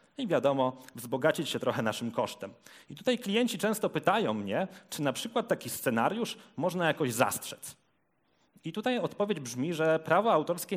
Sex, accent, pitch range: male, native, 140-190 Hz